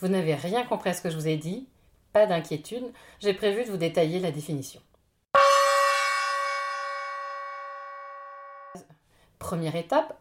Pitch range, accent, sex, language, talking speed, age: 155-220 Hz, French, female, French, 130 wpm, 30-49